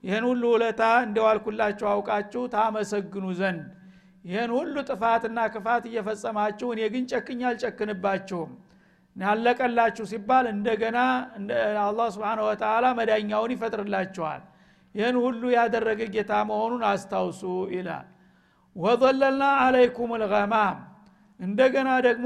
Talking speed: 45 wpm